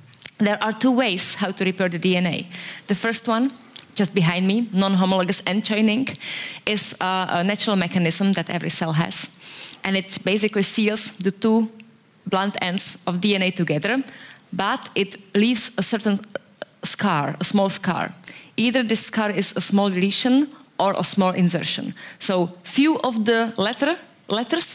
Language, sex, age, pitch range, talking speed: Dutch, female, 20-39, 180-215 Hz, 150 wpm